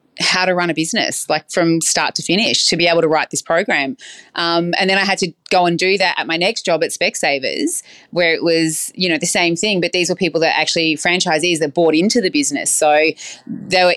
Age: 20-39